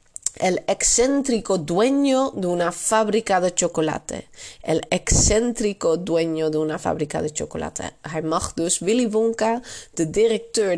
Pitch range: 160-225 Hz